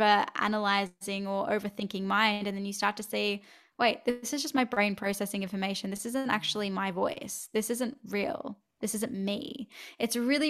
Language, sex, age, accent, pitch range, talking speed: English, female, 10-29, Australian, 200-245 Hz, 175 wpm